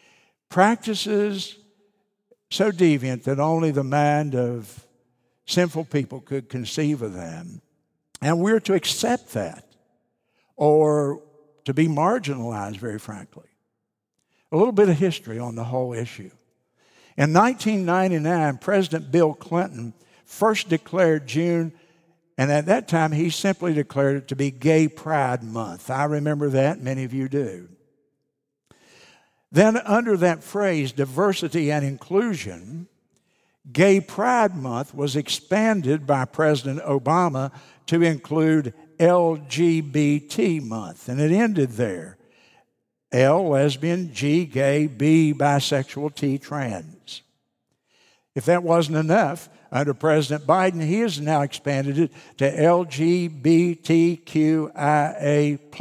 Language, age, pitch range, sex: English, 60-79, 140-175 Hz, male